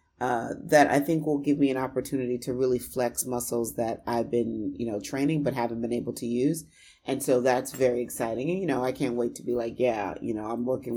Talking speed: 240 wpm